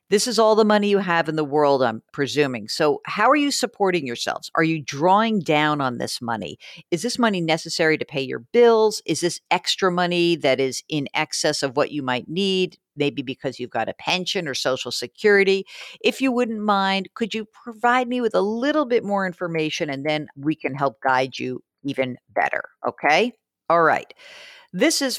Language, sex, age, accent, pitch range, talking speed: English, female, 50-69, American, 135-205 Hz, 200 wpm